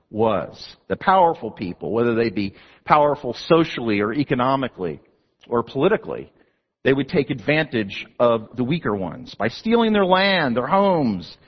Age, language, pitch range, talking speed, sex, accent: 50-69, English, 120-185 Hz, 140 wpm, male, American